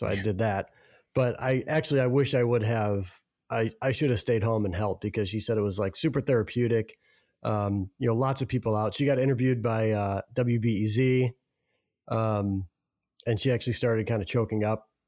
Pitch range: 110-135 Hz